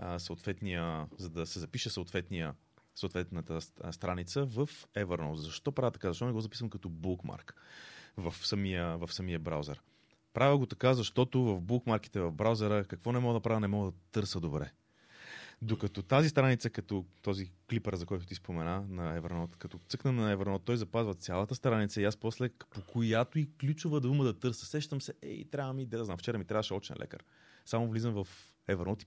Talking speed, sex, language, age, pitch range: 180 wpm, male, Bulgarian, 30-49, 95-130 Hz